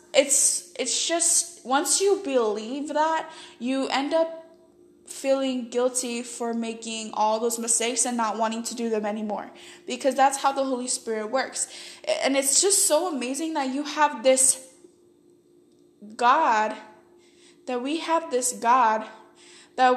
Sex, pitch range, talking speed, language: female, 235-310 Hz, 140 wpm, English